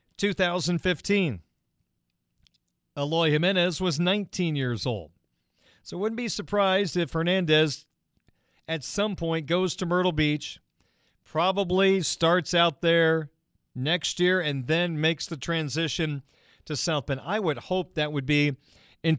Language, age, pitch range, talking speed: English, 40-59, 140-170 Hz, 130 wpm